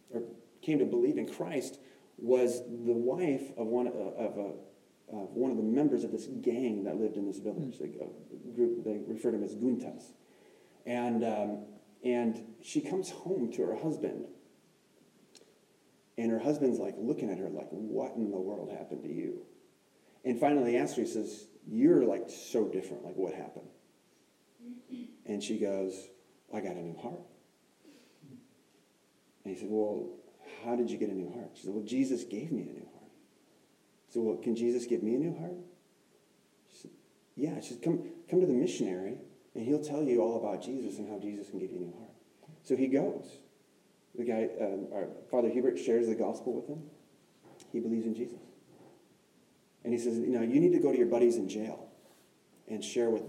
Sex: male